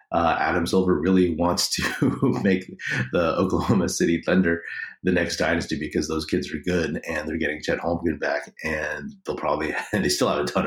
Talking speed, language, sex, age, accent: 185 wpm, English, male, 30-49, American